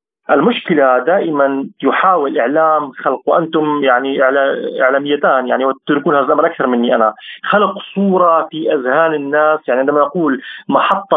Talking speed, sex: 130 wpm, male